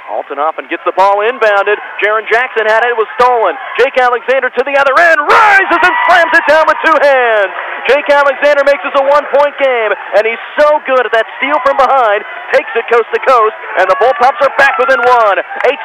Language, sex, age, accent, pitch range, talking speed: English, male, 30-49, American, 205-270 Hz, 210 wpm